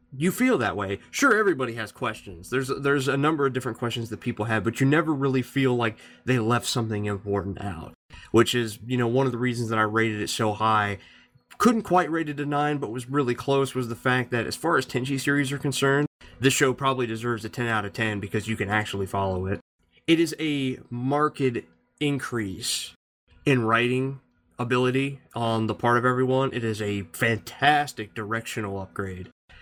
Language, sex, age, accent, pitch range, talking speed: English, male, 20-39, American, 105-135 Hz, 200 wpm